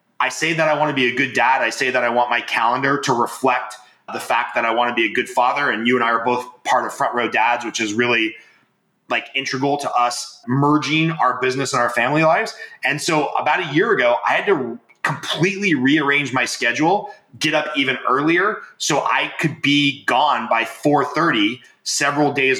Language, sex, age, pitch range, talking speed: English, male, 30-49, 130-160 Hz, 210 wpm